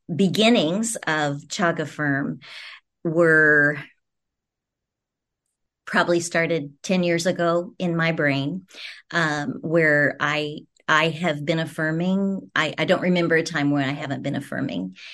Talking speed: 125 wpm